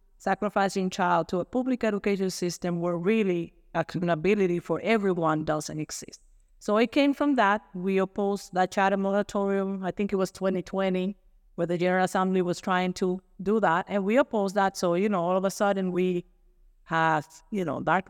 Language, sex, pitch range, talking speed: English, female, 180-215 Hz, 180 wpm